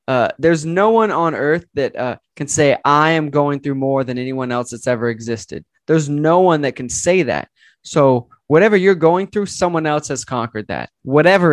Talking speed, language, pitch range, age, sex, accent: 205 wpm, English, 130-165 Hz, 20-39, male, American